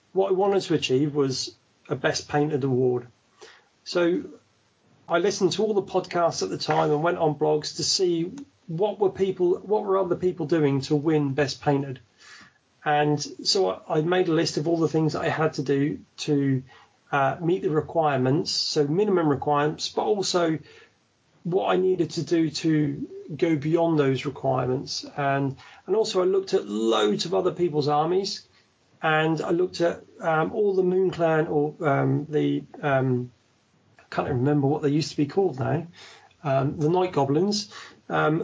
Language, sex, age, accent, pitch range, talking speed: English, male, 30-49, British, 140-180 Hz, 175 wpm